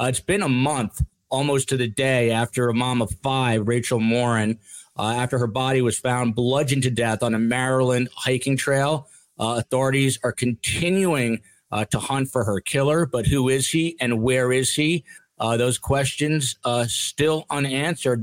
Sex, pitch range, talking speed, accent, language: male, 120-140 Hz, 180 wpm, American, English